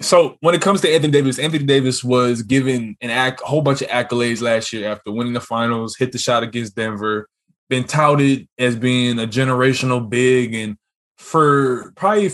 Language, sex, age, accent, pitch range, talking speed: English, male, 20-39, American, 115-150 Hz, 180 wpm